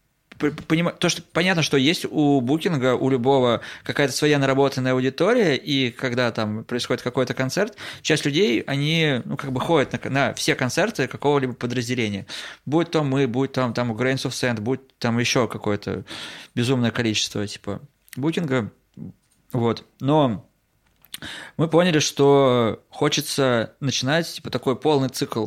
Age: 20-39